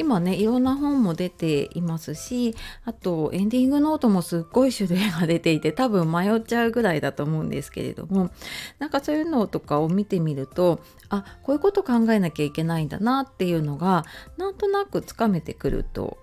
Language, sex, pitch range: Japanese, female, 170-265 Hz